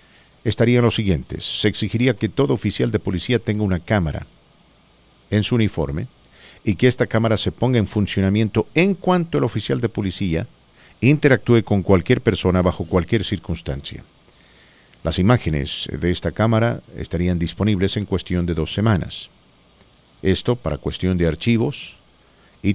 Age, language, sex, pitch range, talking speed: 50-69, English, male, 90-110 Hz, 145 wpm